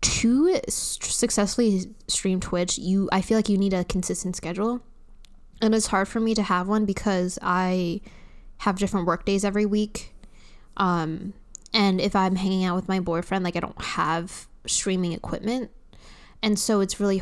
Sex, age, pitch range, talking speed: female, 10-29, 175-205 Hz, 165 wpm